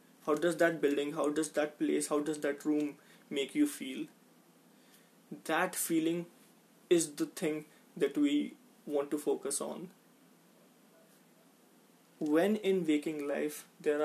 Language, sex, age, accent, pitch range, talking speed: Hindi, male, 20-39, native, 150-240 Hz, 130 wpm